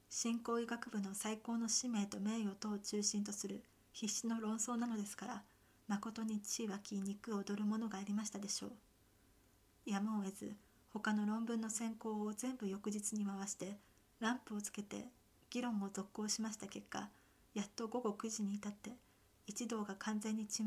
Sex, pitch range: female, 205-225 Hz